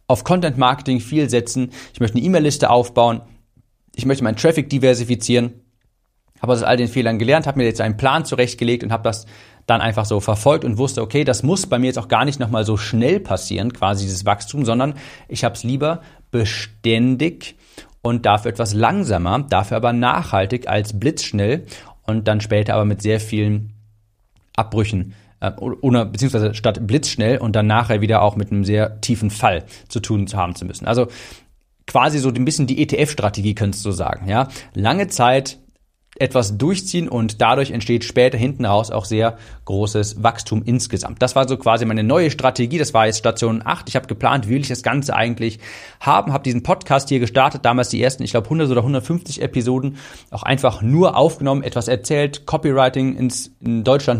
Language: German